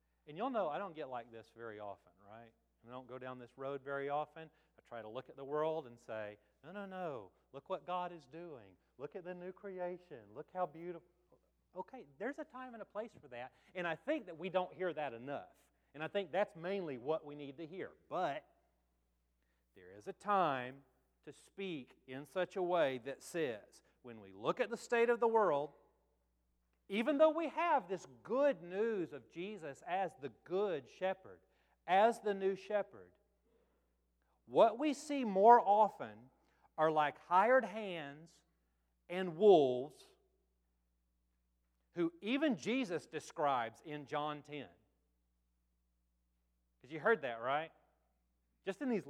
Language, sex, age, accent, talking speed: English, male, 40-59, American, 165 wpm